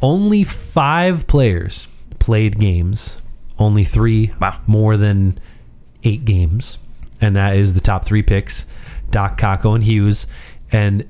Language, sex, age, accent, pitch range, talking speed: English, male, 30-49, American, 95-125 Hz, 125 wpm